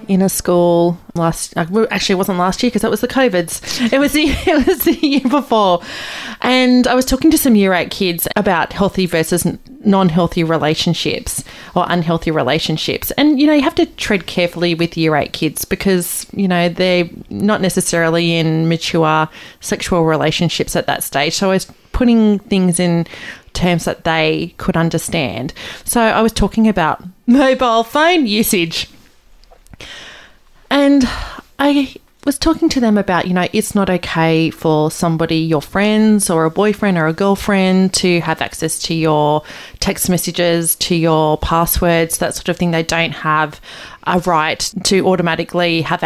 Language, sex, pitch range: English, female, 165-215 Hz